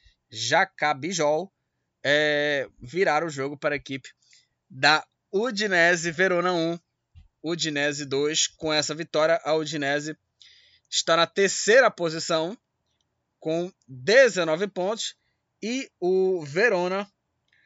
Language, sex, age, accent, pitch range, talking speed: Portuguese, male, 20-39, Brazilian, 145-185 Hz, 100 wpm